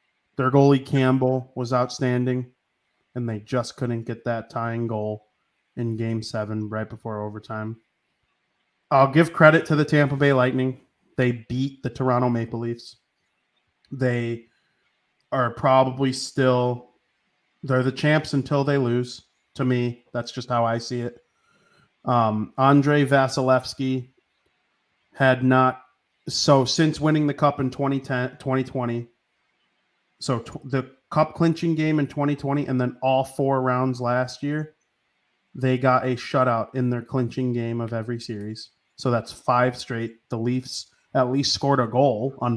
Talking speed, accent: 140 wpm, American